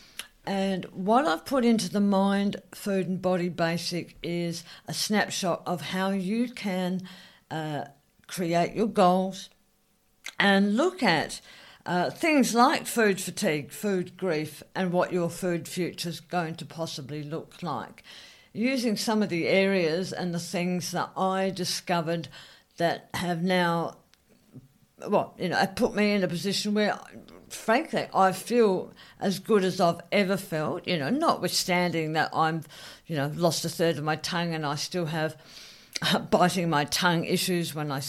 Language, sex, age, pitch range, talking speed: English, female, 50-69, 165-190 Hz, 155 wpm